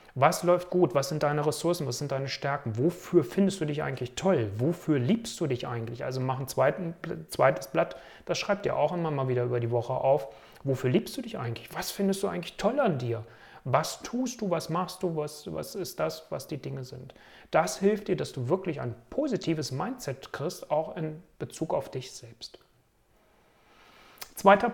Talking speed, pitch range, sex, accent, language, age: 195 wpm, 130-175 Hz, male, German, German, 40-59